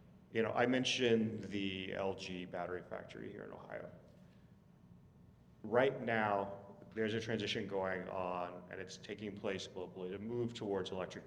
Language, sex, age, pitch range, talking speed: English, male, 30-49, 95-110 Hz, 145 wpm